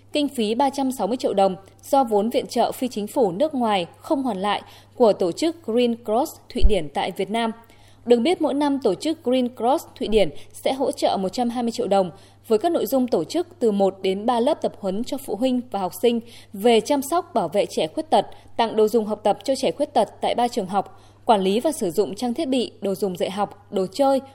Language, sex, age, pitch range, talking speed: Vietnamese, female, 20-39, 200-270 Hz, 240 wpm